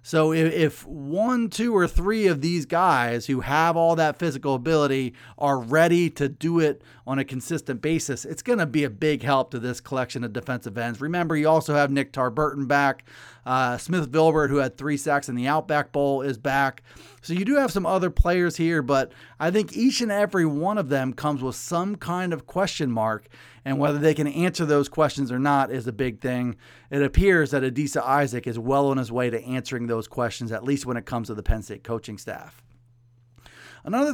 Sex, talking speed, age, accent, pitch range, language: male, 210 wpm, 30-49, American, 125-165 Hz, English